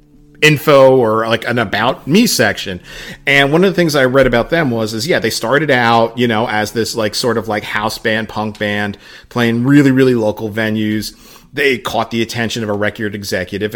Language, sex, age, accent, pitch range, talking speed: English, male, 40-59, American, 110-140 Hz, 205 wpm